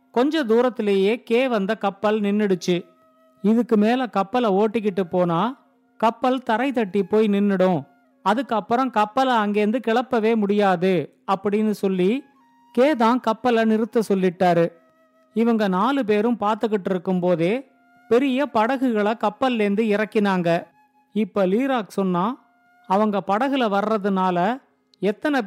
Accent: native